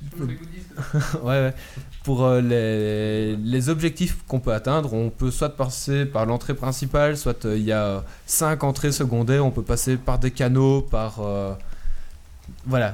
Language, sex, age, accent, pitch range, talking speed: French, male, 20-39, French, 110-140 Hz, 160 wpm